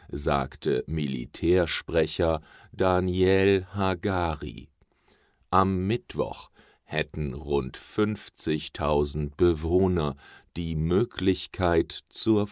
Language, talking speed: English, 60 wpm